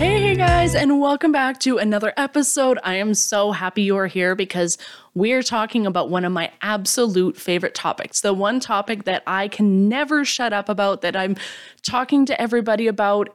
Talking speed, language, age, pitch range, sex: 180 wpm, English, 20-39, 195-255 Hz, female